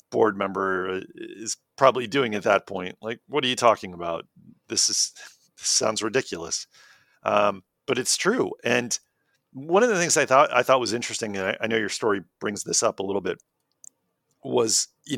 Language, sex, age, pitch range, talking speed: English, male, 40-59, 95-110 Hz, 190 wpm